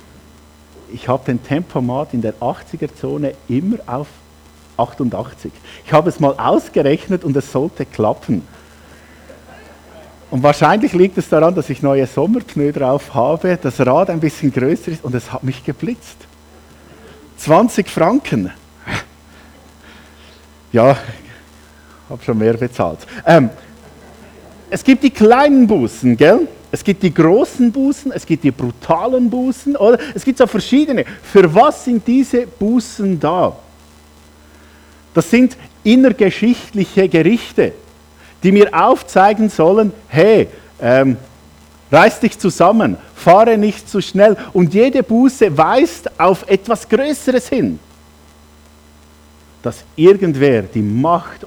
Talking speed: 125 wpm